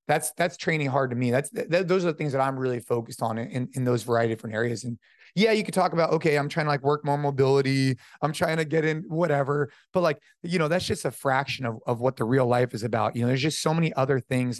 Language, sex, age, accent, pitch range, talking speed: English, male, 30-49, American, 125-155 Hz, 280 wpm